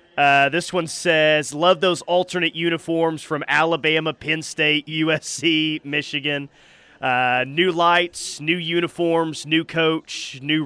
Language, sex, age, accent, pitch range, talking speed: English, male, 30-49, American, 140-175 Hz, 125 wpm